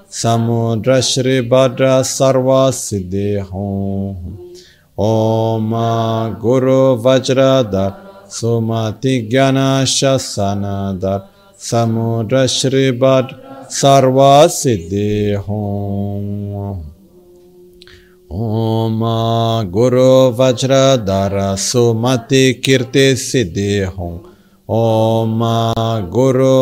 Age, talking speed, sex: 50-69, 55 wpm, male